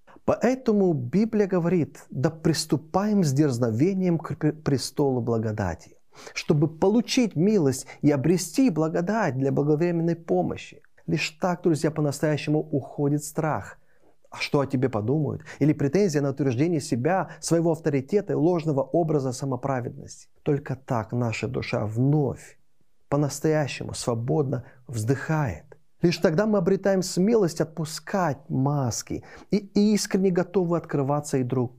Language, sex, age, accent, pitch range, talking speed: Russian, male, 30-49, native, 130-170 Hz, 115 wpm